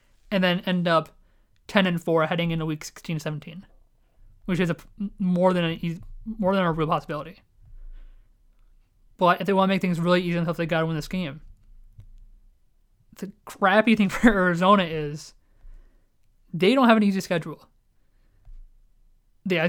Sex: male